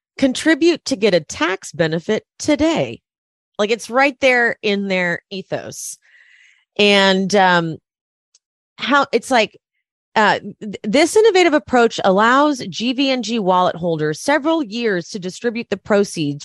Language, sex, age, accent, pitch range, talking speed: English, female, 30-49, American, 175-255 Hz, 125 wpm